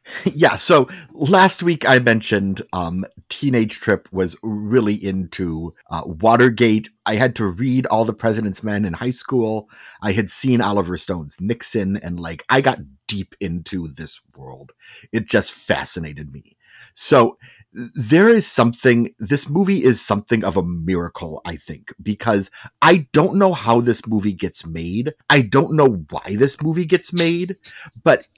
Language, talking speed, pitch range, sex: English, 155 wpm, 100-130 Hz, male